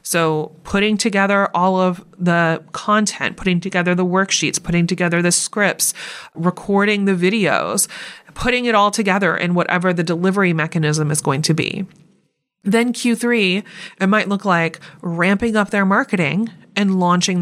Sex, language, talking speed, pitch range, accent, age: female, English, 150 wpm, 175-215 Hz, American, 30-49